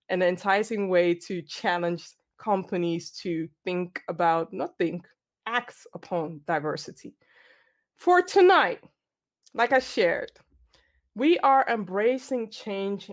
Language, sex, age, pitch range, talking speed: English, female, 20-39, 180-240 Hz, 105 wpm